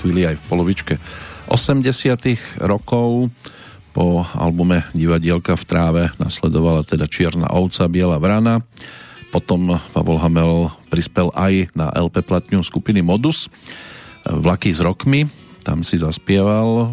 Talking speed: 110 wpm